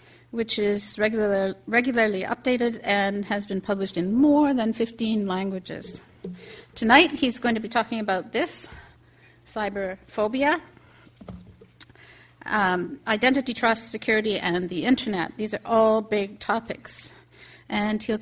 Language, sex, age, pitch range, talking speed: English, female, 50-69, 195-235 Hz, 120 wpm